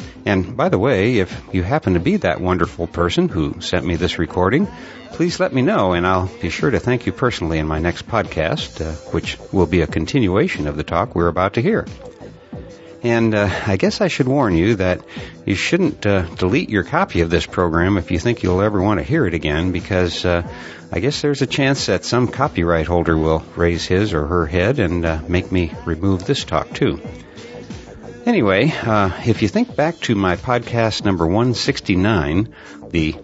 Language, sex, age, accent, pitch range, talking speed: English, male, 60-79, American, 85-105 Hz, 200 wpm